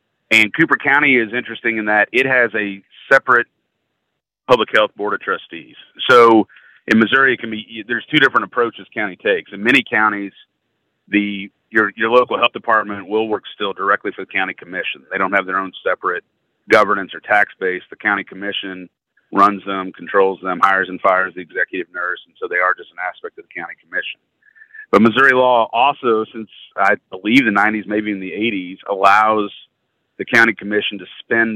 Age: 40-59